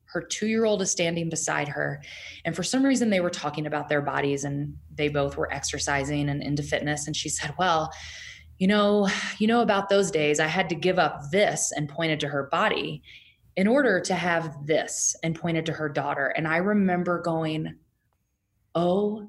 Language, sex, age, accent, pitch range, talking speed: English, female, 20-39, American, 160-200 Hz, 190 wpm